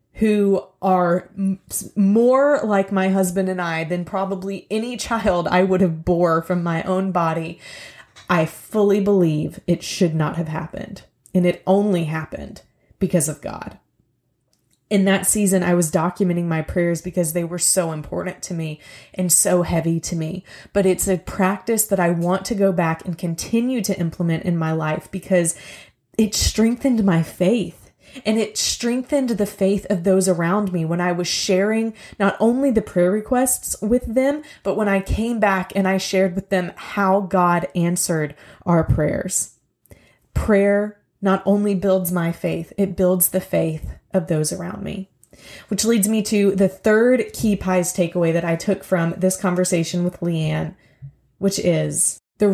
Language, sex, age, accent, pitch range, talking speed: English, female, 20-39, American, 175-200 Hz, 165 wpm